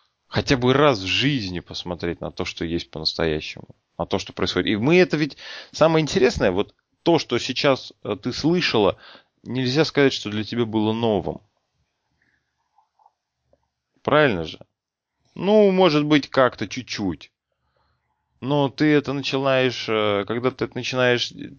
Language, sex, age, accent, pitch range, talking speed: Russian, male, 20-39, native, 95-135 Hz, 135 wpm